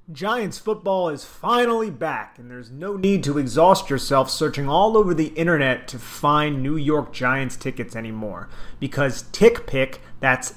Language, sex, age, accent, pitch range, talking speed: English, male, 30-49, American, 130-165 Hz, 155 wpm